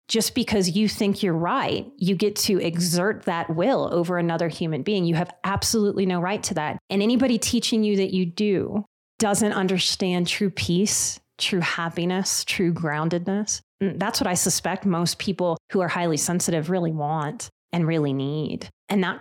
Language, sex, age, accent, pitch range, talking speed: English, female, 30-49, American, 185-285 Hz, 170 wpm